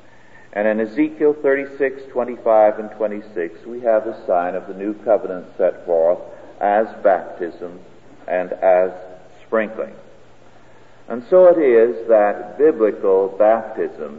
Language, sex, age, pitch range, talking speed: English, male, 50-69, 105-135 Hz, 120 wpm